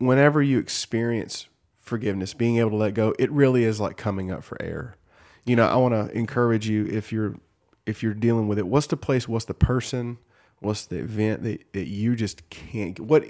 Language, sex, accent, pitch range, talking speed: English, male, American, 100-120 Hz, 210 wpm